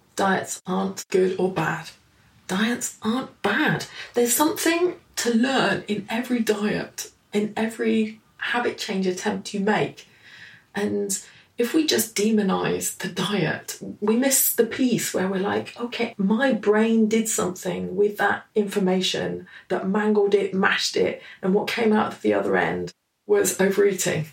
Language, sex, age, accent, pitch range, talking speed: English, female, 20-39, British, 180-235 Hz, 145 wpm